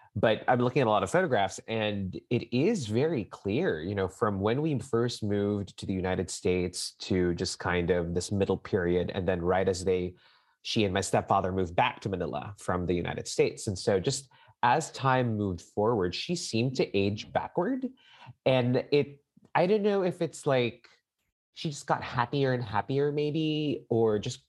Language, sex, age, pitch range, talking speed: English, male, 30-49, 95-130 Hz, 190 wpm